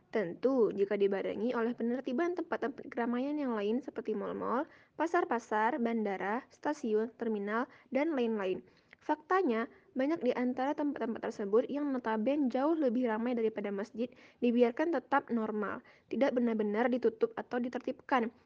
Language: Indonesian